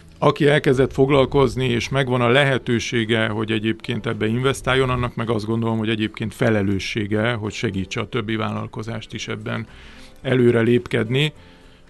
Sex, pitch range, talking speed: male, 110-130 Hz, 135 wpm